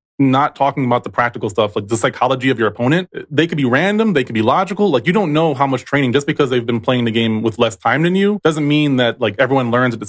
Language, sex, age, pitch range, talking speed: English, male, 20-39, 110-155 Hz, 280 wpm